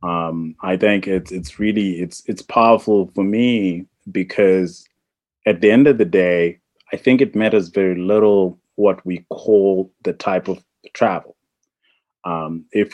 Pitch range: 95-120 Hz